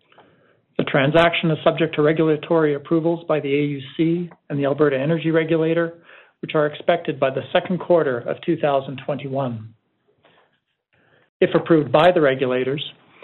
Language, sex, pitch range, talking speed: English, male, 145-175 Hz, 125 wpm